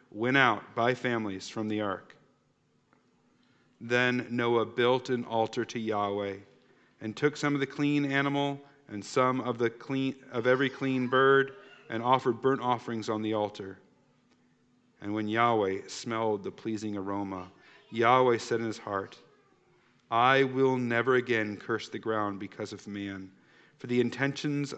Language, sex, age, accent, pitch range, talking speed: English, male, 40-59, American, 110-135 Hz, 150 wpm